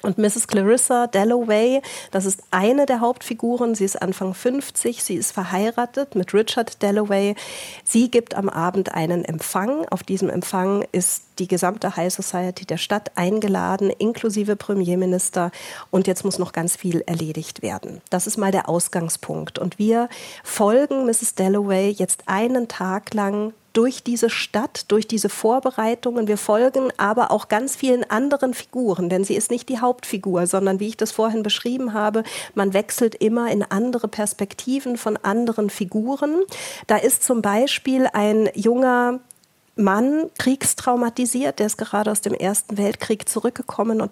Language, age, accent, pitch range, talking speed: German, 40-59, German, 195-240 Hz, 155 wpm